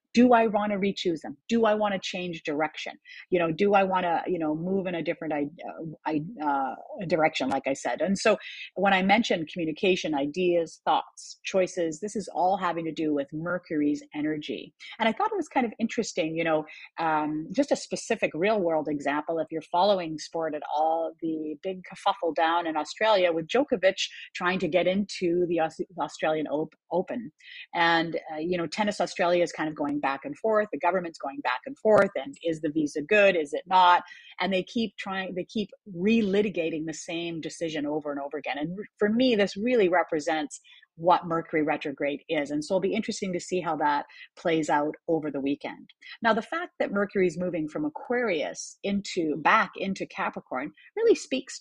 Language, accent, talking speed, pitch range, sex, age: English, American, 195 wpm, 160-210 Hz, female, 40-59